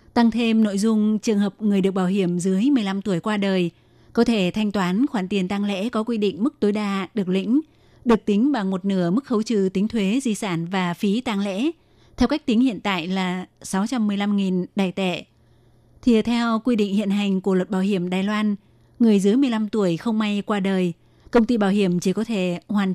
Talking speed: 220 wpm